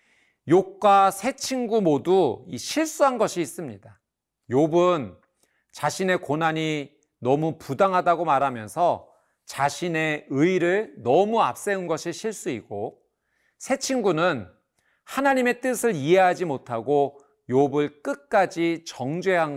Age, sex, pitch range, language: 40-59, male, 135-195 Hz, Korean